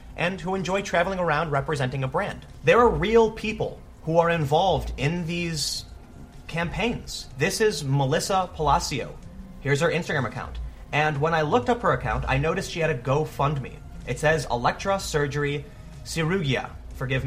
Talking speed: 155 wpm